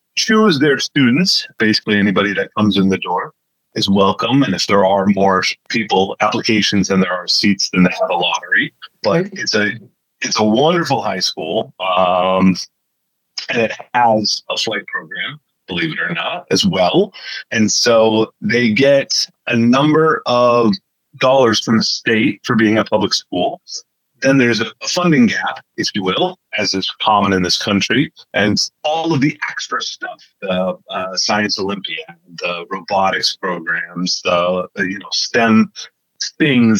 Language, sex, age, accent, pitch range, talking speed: English, male, 30-49, American, 95-120 Hz, 160 wpm